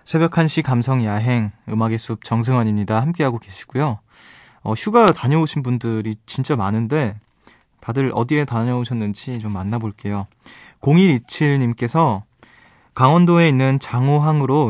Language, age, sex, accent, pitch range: Korean, 20-39, male, native, 115-150 Hz